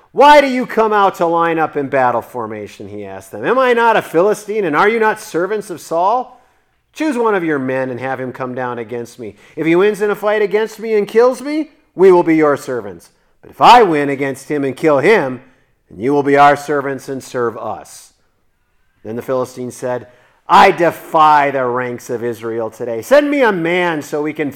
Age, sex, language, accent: 40-59, male, English, American